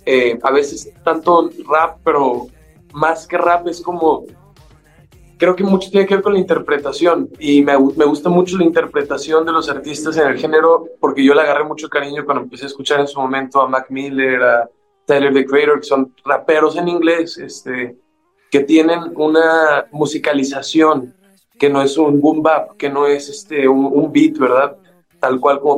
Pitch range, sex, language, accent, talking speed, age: 140-170 Hz, male, Spanish, Mexican, 185 wpm, 20-39